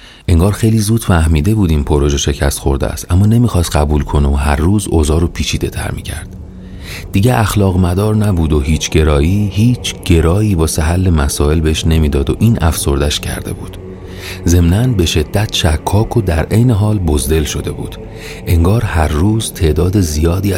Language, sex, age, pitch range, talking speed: Persian, male, 40-59, 75-95 Hz, 165 wpm